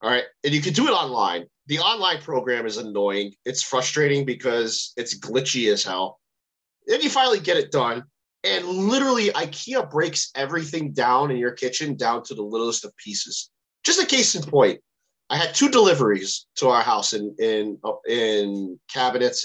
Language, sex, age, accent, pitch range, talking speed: English, male, 30-49, American, 125-210 Hz, 175 wpm